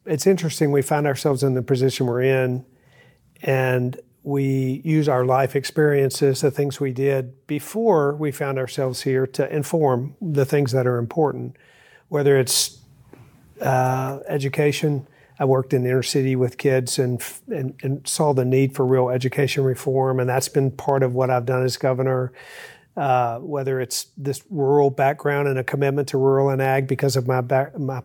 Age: 50-69